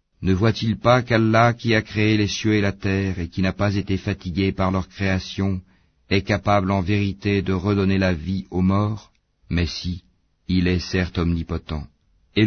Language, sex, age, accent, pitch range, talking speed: French, male, 50-69, French, 90-110 Hz, 185 wpm